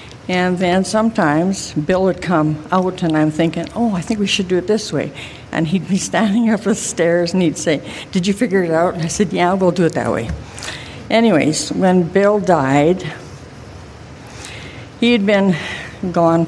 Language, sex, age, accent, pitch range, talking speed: English, female, 60-79, American, 165-205 Hz, 185 wpm